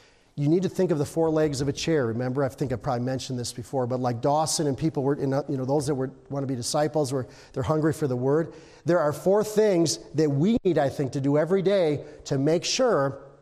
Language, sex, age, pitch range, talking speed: English, male, 40-59, 140-180 Hz, 255 wpm